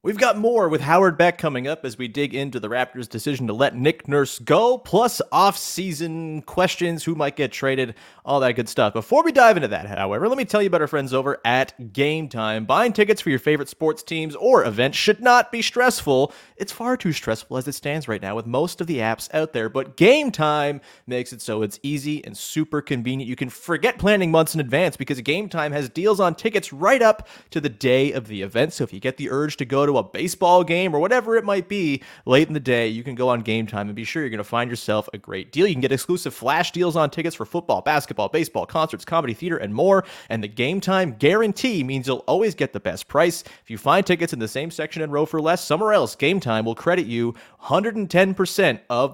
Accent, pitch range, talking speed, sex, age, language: American, 125-175 Hz, 245 wpm, male, 30-49, English